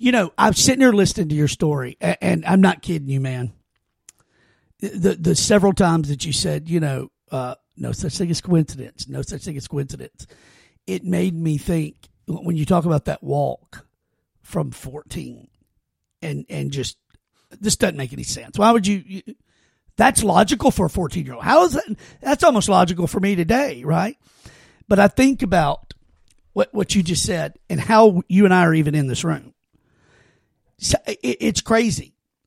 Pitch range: 160-210 Hz